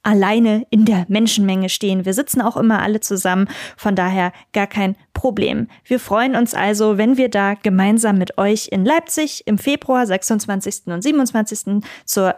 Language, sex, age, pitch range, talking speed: German, female, 20-39, 205-250 Hz, 165 wpm